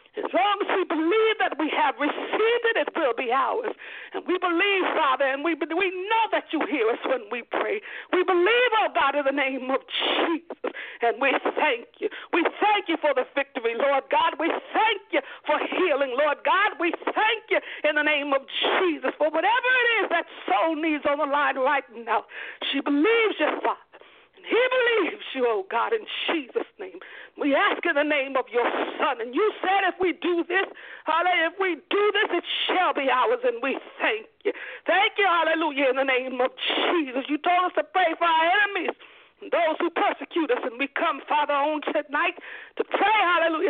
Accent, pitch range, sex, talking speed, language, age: American, 290-415 Hz, female, 200 wpm, English, 50-69